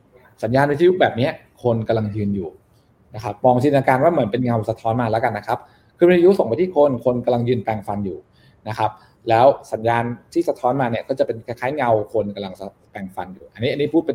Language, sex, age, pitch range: Thai, male, 20-39, 105-130 Hz